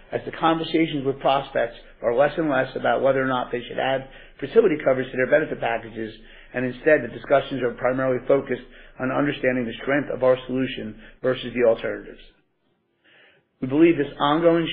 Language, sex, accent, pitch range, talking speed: English, male, American, 120-145 Hz, 175 wpm